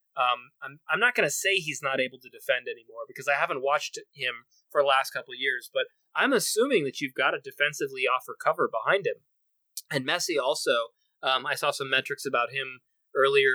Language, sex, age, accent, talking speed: English, male, 30-49, American, 210 wpm